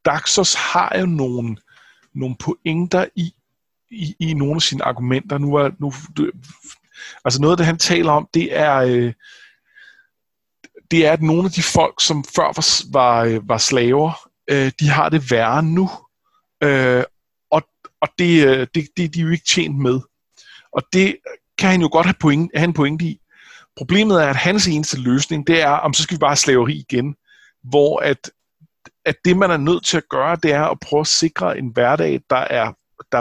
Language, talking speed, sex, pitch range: Danish, 195 wpm, male, 135-175 Hz